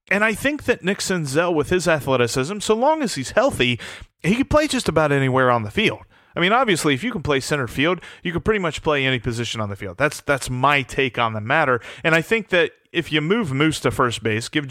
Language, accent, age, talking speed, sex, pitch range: English, American, 30-49, 250 wpm, male, 120-160 Hz